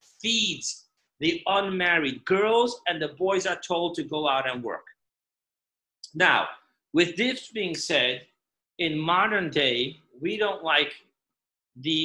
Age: 40-59